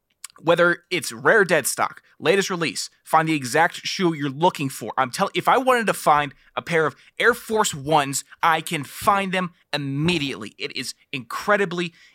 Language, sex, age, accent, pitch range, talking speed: English, male, 20-39, American, 140-180 Hz, 175 wpm